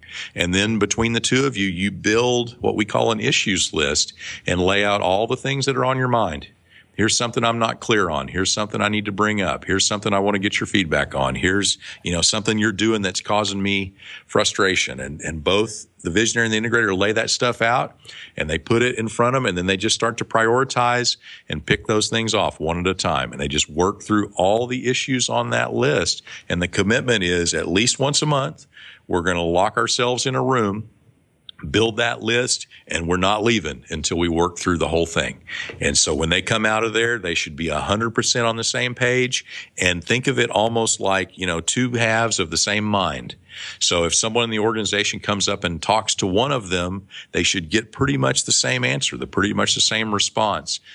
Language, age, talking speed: English, 50-69, 230 wpm